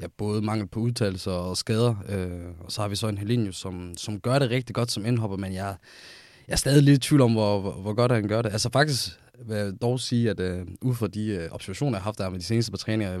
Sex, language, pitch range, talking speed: male, Danish, 95-120 Hz, 280 wpm